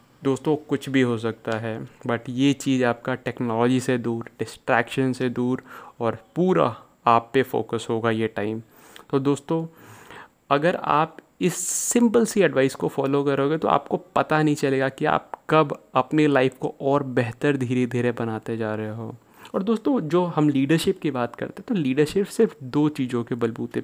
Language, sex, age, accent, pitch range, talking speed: Hindi, male, 30-49, native, 125-155 Hz, 175 wpm